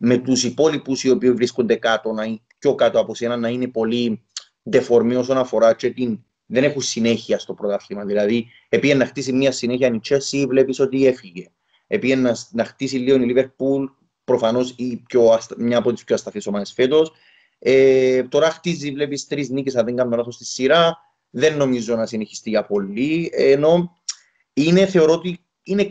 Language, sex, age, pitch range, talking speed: Greek, male, 30-49, 115-145 Hz, 170 wpm